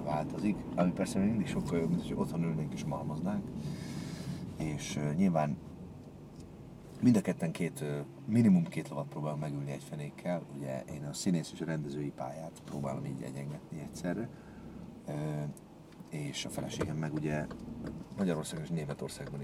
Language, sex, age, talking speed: Hungarian, male, 40-59, 150 wpm